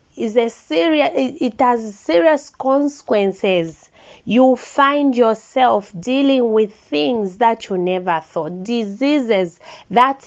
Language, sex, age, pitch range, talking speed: English, female, 30-49, 185-265 Hz, 110 wpm